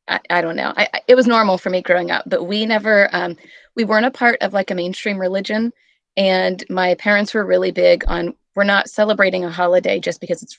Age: 30-49